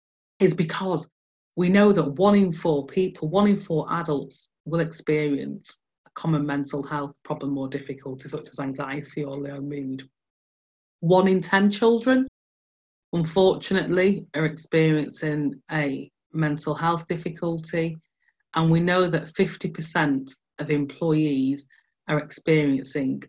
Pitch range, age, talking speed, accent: 140-170 Hz, 30-49, 125 wpm, British